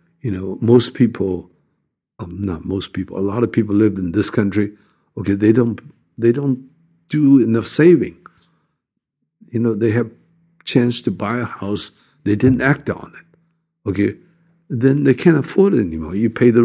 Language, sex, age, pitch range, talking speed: English, male, 60-79, 100-140 Hz, 160 wpm